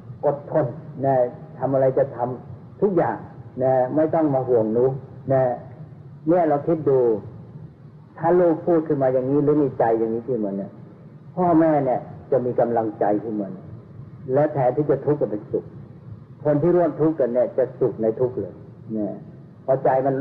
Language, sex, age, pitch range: Thai, male, 60-79, 115-150 Hz